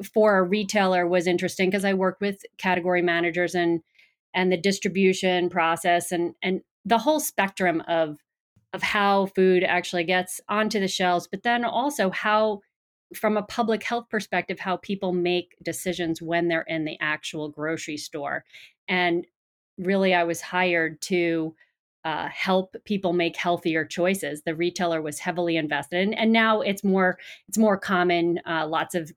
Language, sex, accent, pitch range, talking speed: English, female, American, 170-200 Hz, 160 wpm